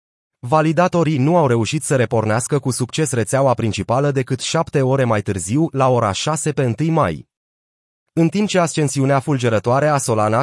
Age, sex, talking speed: 30-49, male, 160 wpm